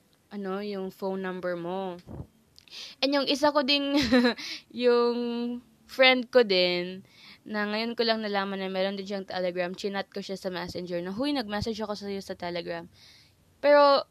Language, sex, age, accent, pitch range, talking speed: Filipino, female, 20-39, native, 180-230 Hz, 155 wpm